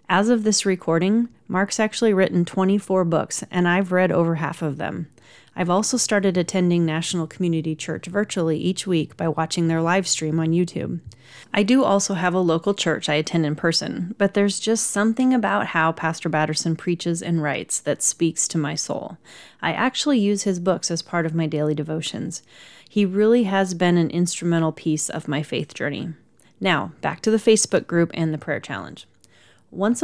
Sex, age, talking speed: female, 30-49, 185 wpm